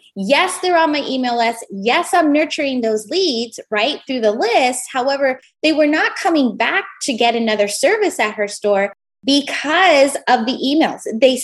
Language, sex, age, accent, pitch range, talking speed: English, female, 20-39, American, 215-300 Hz, 175 wpm